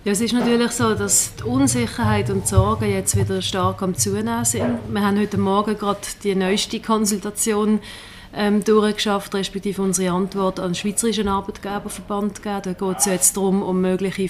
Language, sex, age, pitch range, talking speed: German, female, 30-49, 185-210 Hz, 175 wpm